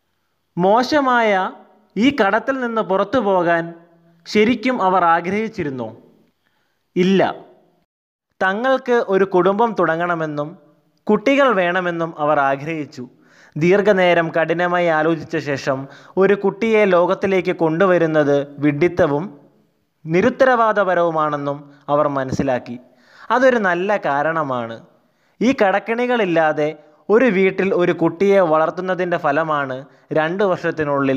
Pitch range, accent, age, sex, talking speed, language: 150-205 Hz, native, 20-39, male, 85 wpm, Malayalam